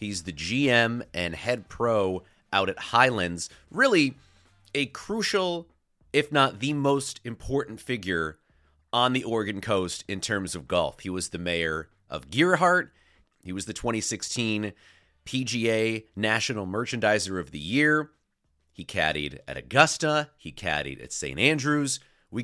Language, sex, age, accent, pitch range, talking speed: English, male, 30-49, American, 90-135 Hz, 140 wpm